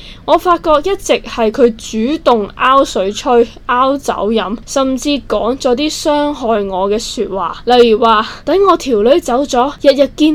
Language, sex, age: Chinese, female, 10-29